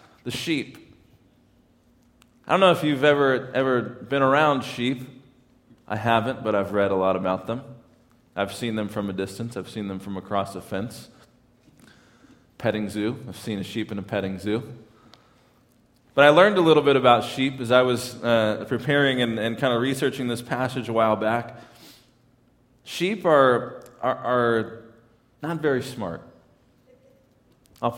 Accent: American